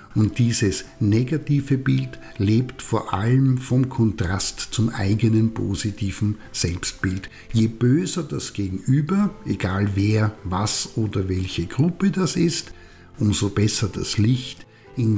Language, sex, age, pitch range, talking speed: German, male, 60-79, 100-130 Hz, 120 wpm